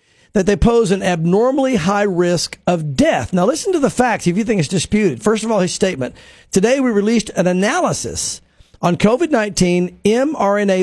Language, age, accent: English, 50-69, American